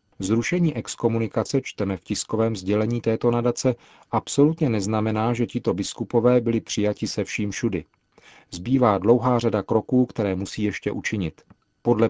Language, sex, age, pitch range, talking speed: Czech, male, 40-59, 100-120 Hz, 135 wpm